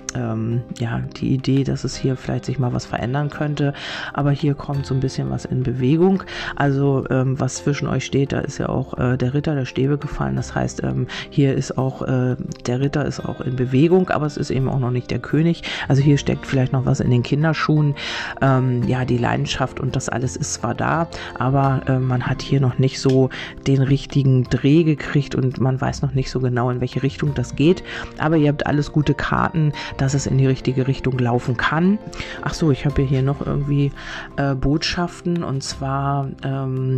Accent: German